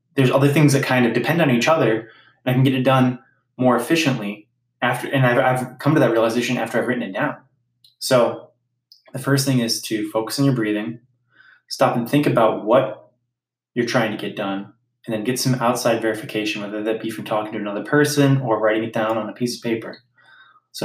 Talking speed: 215 wpm